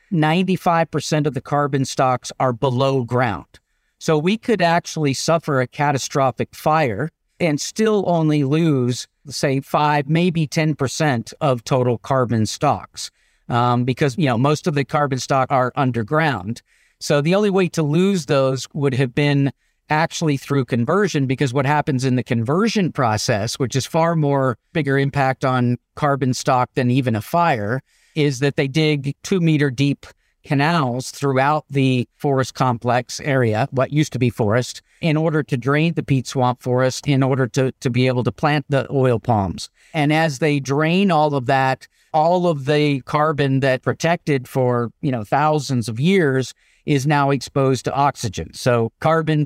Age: 50-69